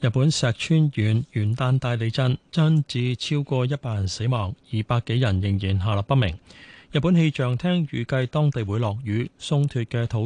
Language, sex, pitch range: Chinese, male, 110-140 Hz